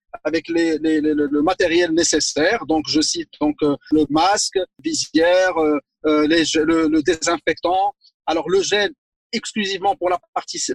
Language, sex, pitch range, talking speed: French, male, 165-270 Hz, 155 wpm